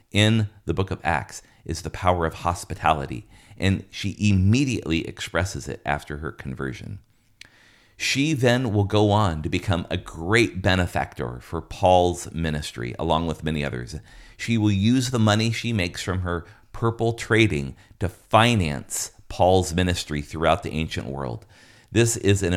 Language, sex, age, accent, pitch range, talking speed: English, male, 40-59, American, 80-105 Hz, 150 wpm